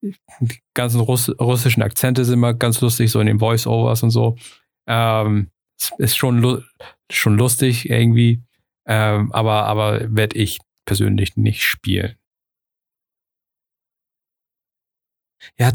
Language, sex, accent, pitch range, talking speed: German, male, German, 110-130 Hz, 110 wpm